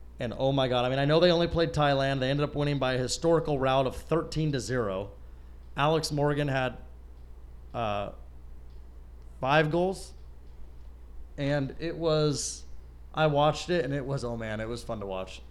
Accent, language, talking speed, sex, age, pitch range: American, English, 180 wpm, male, 30-49, 110-165 Hz